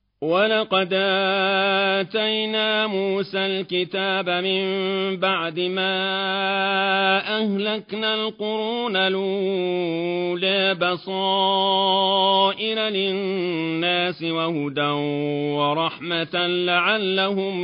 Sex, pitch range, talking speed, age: male, 155-195 Hz, 50 wpm, 40-59